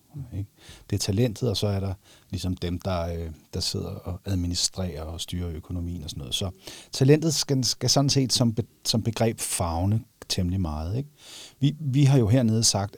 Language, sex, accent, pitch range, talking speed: Danish, male, native, 95-125 Hz, 180 wpm